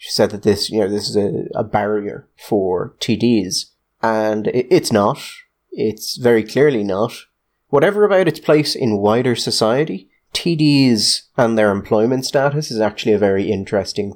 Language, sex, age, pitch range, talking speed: English, male, 30-49, 100-120 Hz, 160 wpm